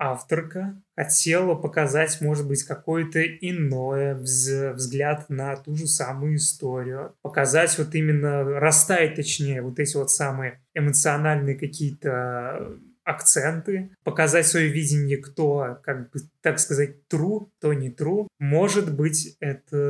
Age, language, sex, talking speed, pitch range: 20-39, Russian, male, 120 wpm, 140-165 Hz